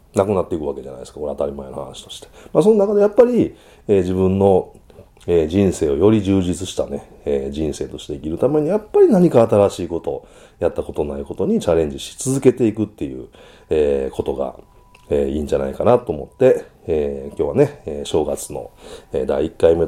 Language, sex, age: Japanese, male, 40-59